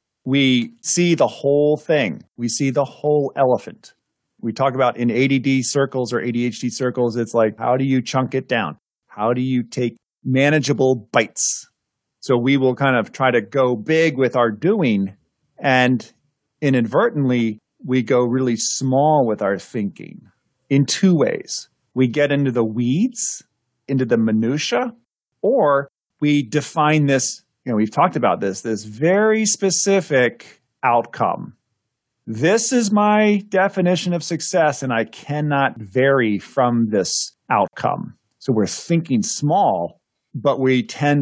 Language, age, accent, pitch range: English, 40-59, American, 120-150 Hz